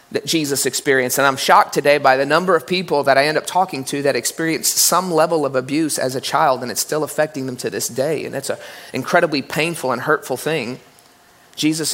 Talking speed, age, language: 220 wpm, 30-49, English